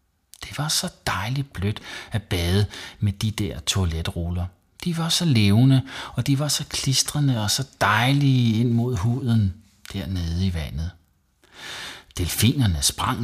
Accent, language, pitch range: native, Danish, 85-120 Hz